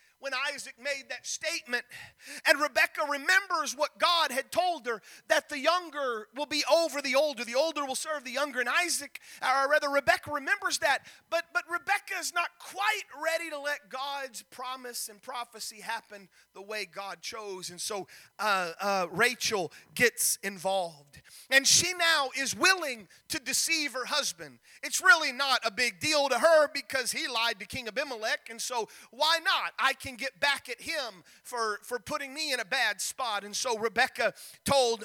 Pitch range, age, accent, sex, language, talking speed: 225-295 Hz, 40-59, American, male, English, 180 wpm